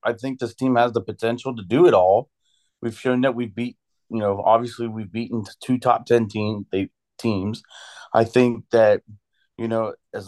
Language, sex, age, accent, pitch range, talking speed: English, male, 30-49, American, 105-130 Hz, 180 wpm